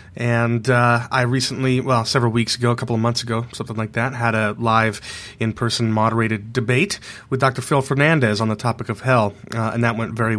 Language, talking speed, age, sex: English, 210 wpm, 30-49, male